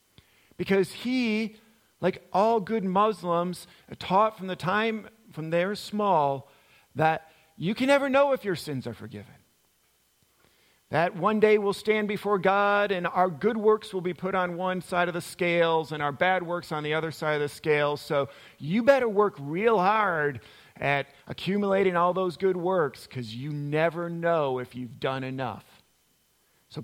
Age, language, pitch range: 40-59, English, 145-195 Hz